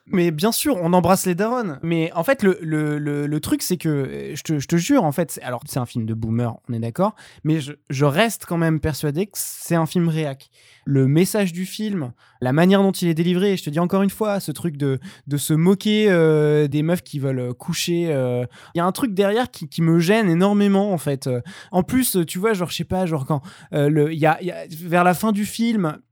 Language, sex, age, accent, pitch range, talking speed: French, male, 20-39, French, 145-190 Hz, 250 wpm